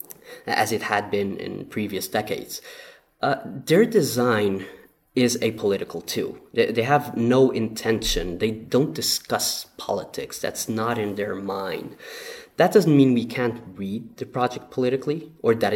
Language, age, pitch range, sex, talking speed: English, 20-39, 115-160 Hz, male, 150 wpm